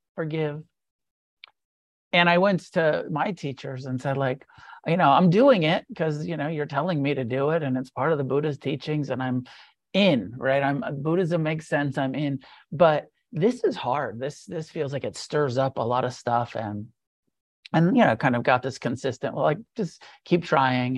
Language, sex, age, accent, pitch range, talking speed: English, male, 40-59, American, 125-165 Hz, 195 wpm